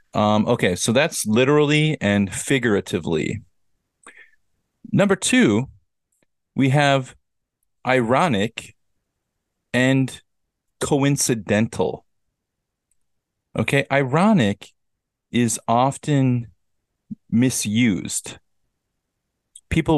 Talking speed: 60 wpm